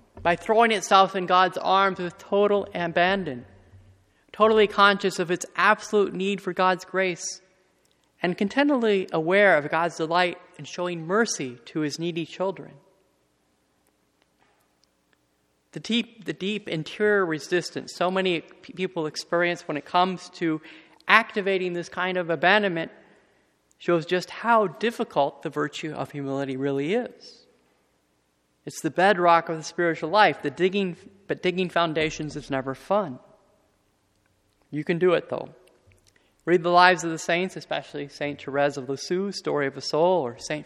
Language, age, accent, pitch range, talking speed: English, 40-59, American, 150-195 Hz, 145 wpm